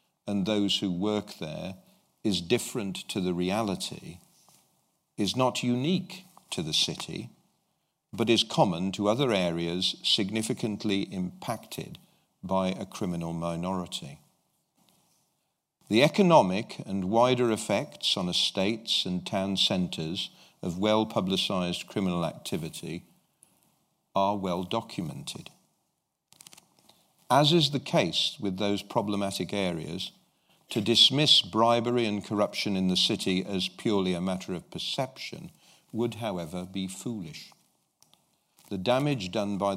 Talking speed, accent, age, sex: 110 wpm, British, 50-69, male